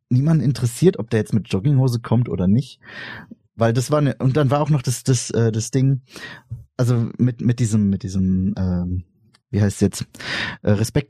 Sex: male